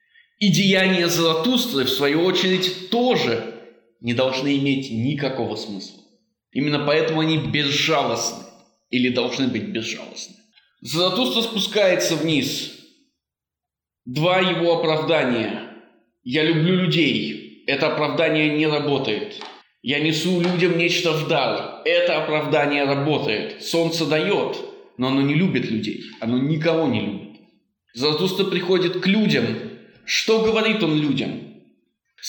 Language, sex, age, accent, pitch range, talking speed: Russian, male, 20-39, native, 140-185 Hz, 115 wpm